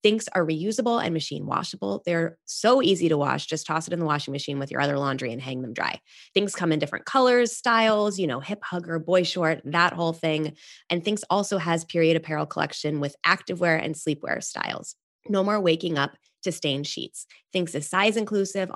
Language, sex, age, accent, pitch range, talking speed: English, female, 20-39, American, 145-190 Hz, 205 wpm